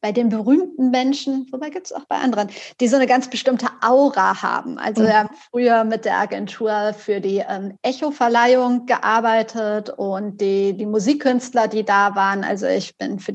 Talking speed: 180 wpm